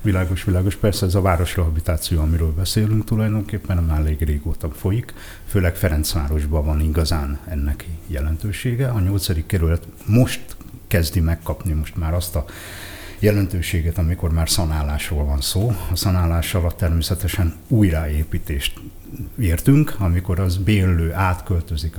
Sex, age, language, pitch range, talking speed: male, 60-79, Hungarian, 80-100 Hz, 120 wpm